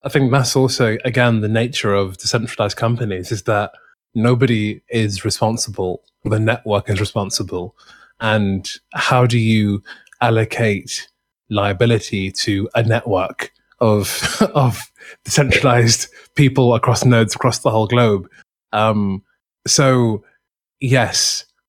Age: 20-39